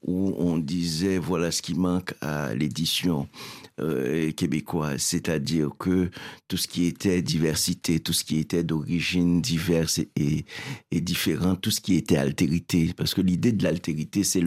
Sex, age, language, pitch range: male, 60-79, French, 85-95 Hz